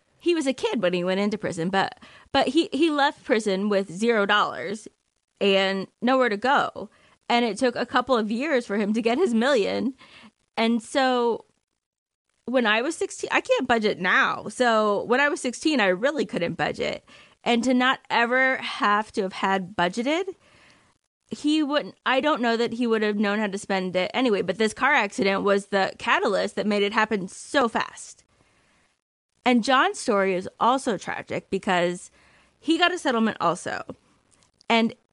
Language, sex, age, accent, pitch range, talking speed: English, female, 20-39, American, 195-255 Hz, 180 wpm